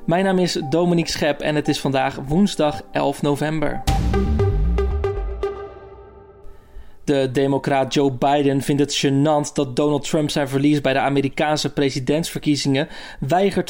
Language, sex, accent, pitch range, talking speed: Dutch, male, Dutch, 140-165 Hz, 125 wpm